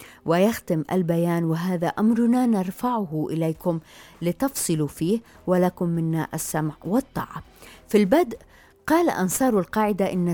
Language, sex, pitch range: Arabic, female, 165-195 Hz